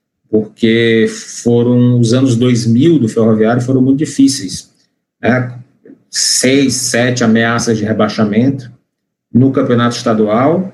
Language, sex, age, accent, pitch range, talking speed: Portuguese, male, 40-59, Brazilian, 120-150 Hz, 105 wpm